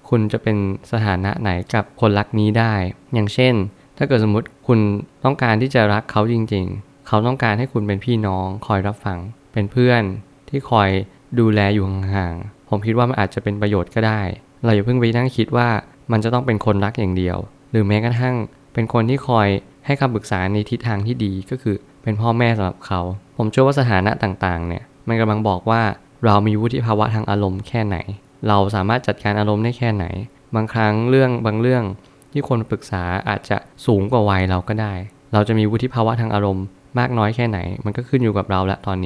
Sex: male